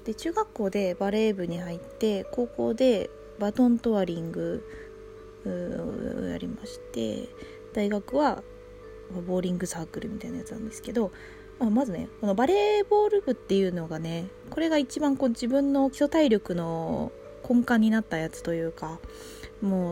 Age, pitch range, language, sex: 20-39, 175-250 Hz, Japanese, female